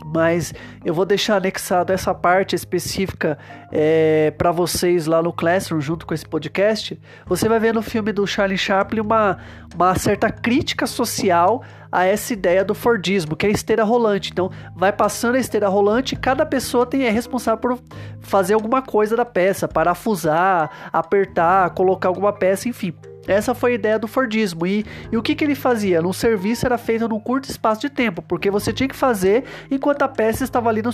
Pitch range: 175-220 Hz